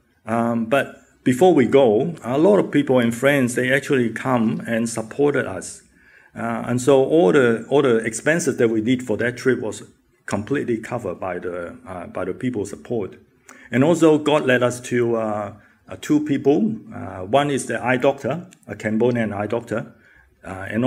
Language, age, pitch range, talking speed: English, 50-69, 110-140 Hz, 180 wpm